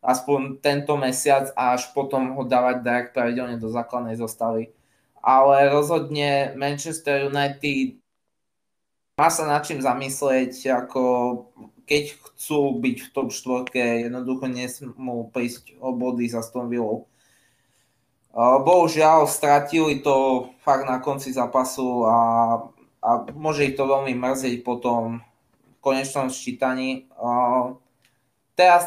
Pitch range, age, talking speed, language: 120-140 Hz, 20-39, 110 wpm, Slovak